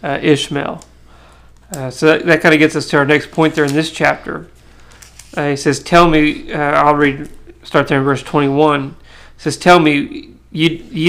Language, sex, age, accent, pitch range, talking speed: English, male, 40-59, American, 140-160 Hz, 195 wpm